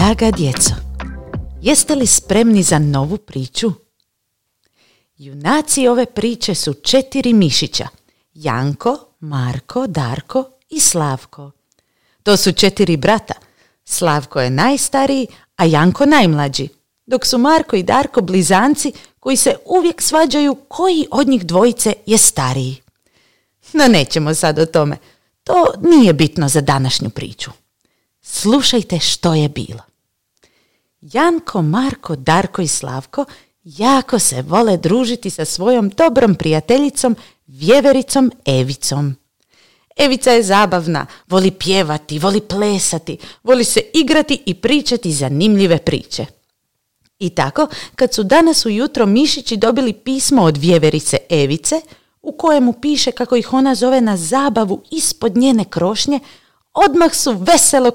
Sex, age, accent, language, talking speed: female, 40-59, native, Croatian, 120 wpm